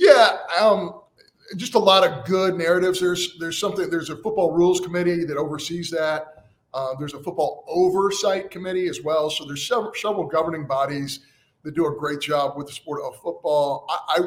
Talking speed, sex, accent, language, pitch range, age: 185 wpm, male, American, English, 145-185 Hz, 30-49